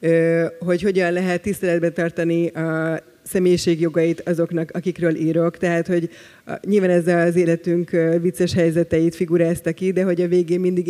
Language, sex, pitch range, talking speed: Hungarian, female, 160-180 Hz, 145 wpm